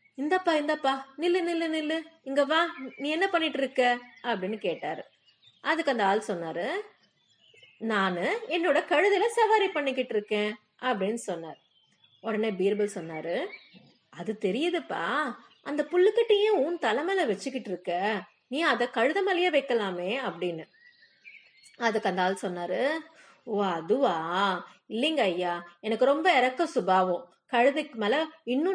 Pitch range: 195-285 Hz